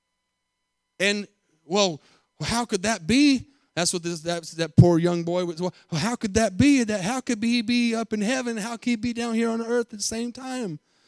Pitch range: 165-225 Hz